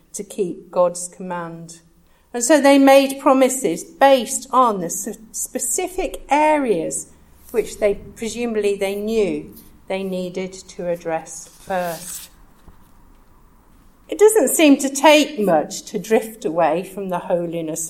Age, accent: 50-69, British